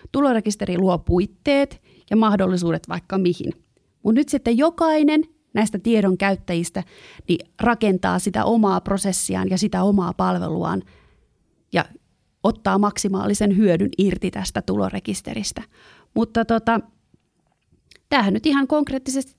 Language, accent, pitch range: Finnish, native, 180-230 Hz